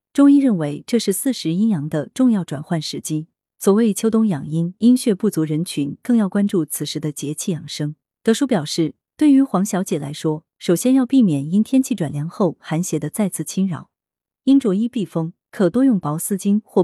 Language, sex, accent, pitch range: Chinese, female, native, 160-245 Hz